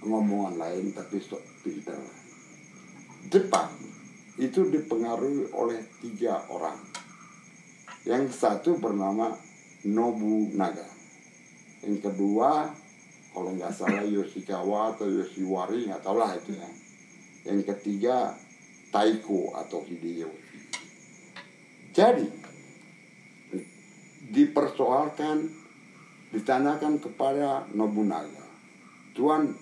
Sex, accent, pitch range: male, native, 100-155 Hz